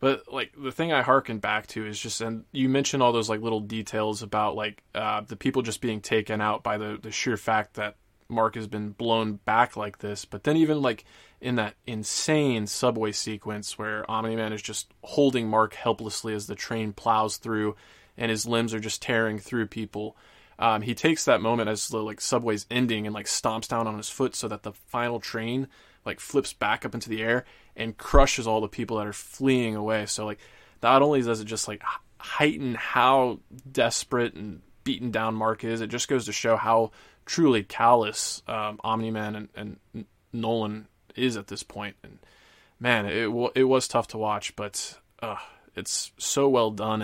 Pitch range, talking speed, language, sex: 105-120 Hz, 200 wpm, English, male